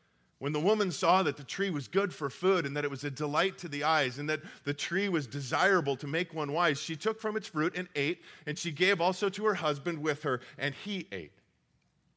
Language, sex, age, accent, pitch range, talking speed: English, male, 40-59, American, 140-185 Hz, 240 wpm